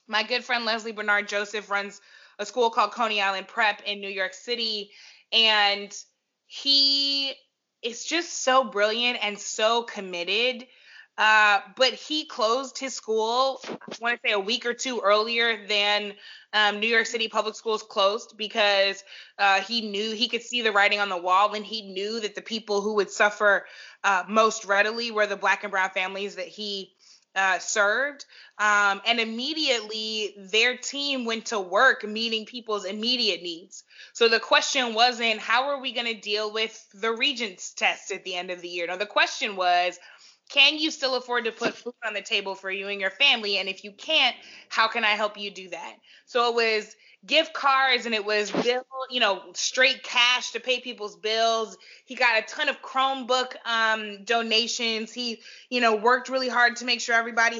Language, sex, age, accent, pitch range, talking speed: English, female, 20-39, American, 205-245 Hz, 190 wpm